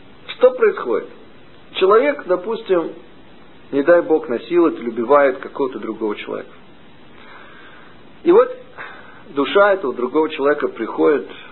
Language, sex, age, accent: Russian, male, 50-69, native